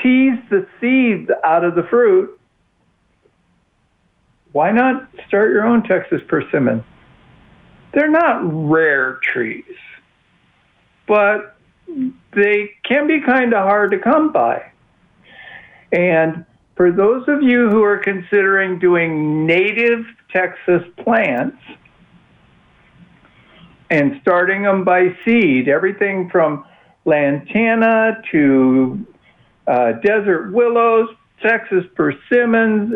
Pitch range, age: 170-230 Hz, 60-79